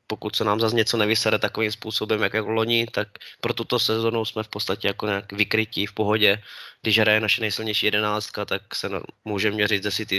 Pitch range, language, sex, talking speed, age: 110-120 Hz, Slovak, male, 190 wpm, 20-39